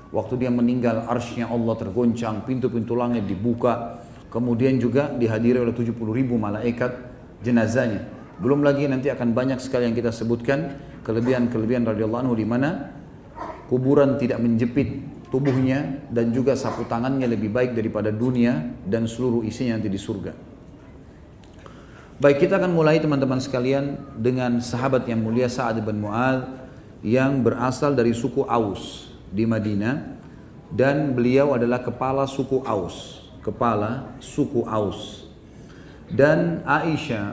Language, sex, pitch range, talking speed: Indonesian, male, 115-135 Hz, 125 wpm